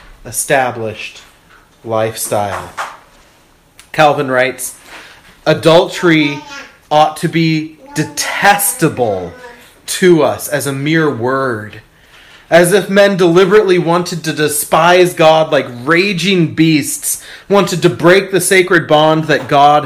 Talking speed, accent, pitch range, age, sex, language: 105 wpm, American, 145-180 Hz, 30-49, male, English